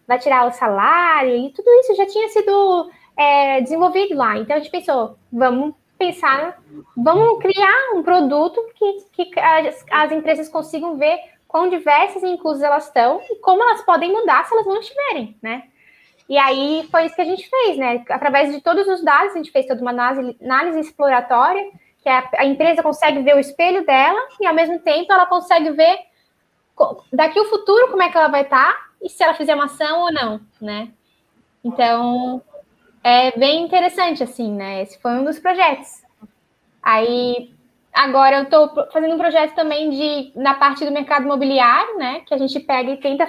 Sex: female